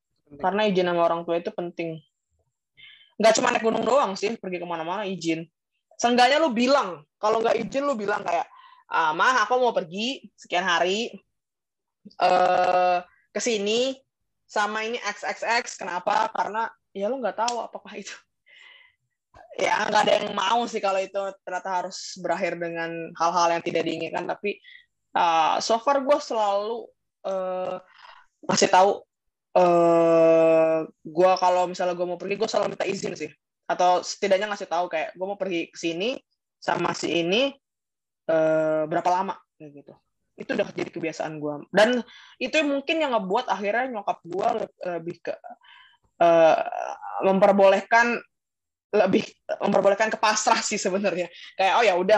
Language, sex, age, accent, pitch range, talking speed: Indonesian, female, 20-39, native, 175-230 Hz, 145 wpm